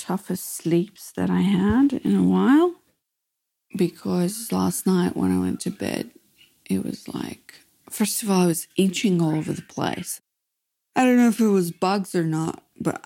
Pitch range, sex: 155-190 Hz, female